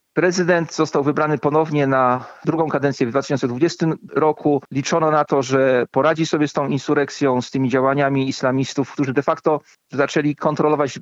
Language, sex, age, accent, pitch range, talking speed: Polish, male, 40-59, native, 135-155 Hz, 150 wpm